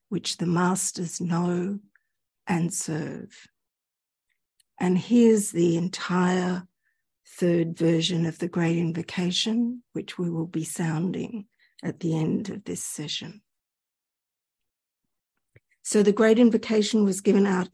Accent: Australian